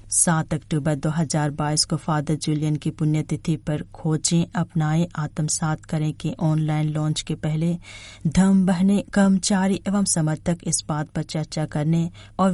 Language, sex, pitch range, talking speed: Hindi, female, 150-180 Hz, 140 wpm